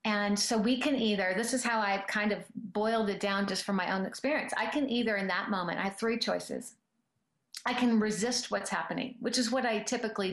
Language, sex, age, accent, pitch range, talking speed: English, female, 40-59, American, 195-240 Hz, 225 wpm